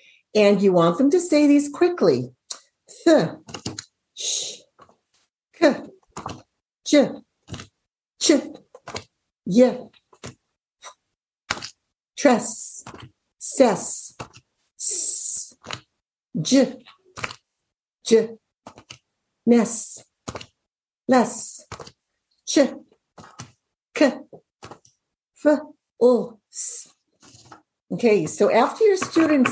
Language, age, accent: English, 60-79, American